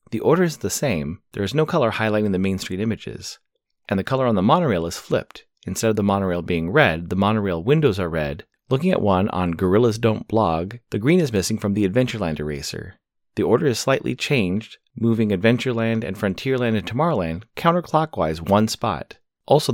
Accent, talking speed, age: American, 190 wpm, 30-49